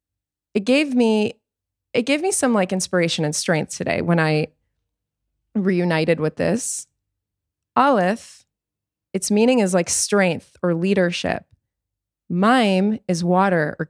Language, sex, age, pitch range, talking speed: English, female, 20-39, 175-215 Hz, 125 wpm